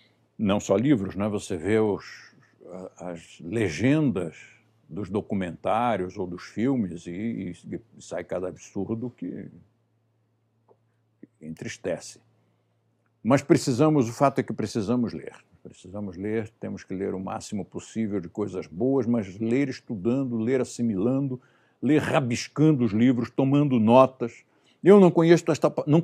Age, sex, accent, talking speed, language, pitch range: 60-79, male, Brazilian, 130 wpm, Portuguese, 110-150 Hz